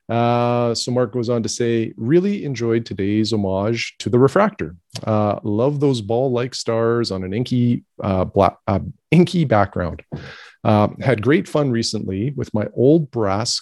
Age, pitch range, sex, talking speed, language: 40-59, 100-125 Hz, male, 160 wpm, English